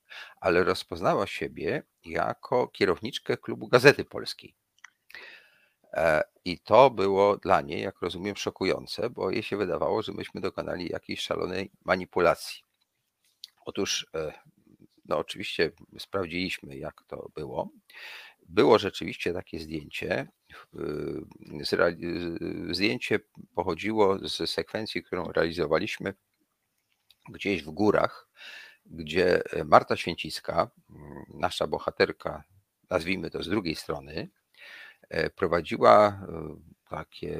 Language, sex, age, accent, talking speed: Polish, male, 40-59, native, 95 wpm